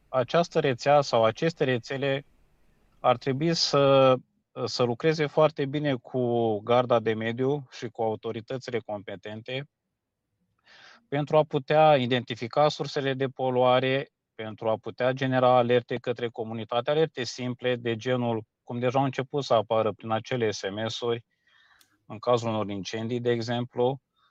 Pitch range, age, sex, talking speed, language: 115-140 Hz, 30-49, male, 130 wpm, Romanian